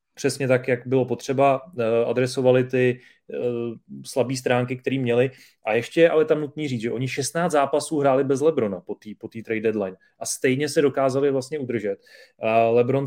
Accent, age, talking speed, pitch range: native, 30-49, 170 wpm, 125-135 Hz